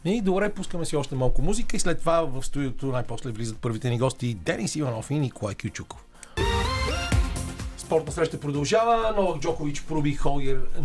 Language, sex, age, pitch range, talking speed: Bulgarian, male, 40-59, 125-150 Hz, 160 wpm